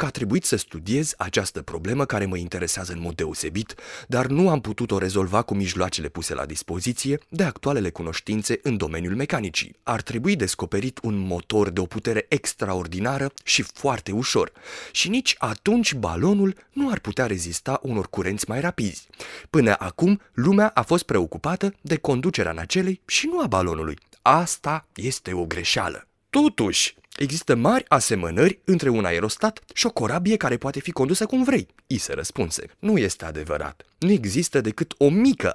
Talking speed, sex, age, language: 165 wpm, male, 30-49, Romanian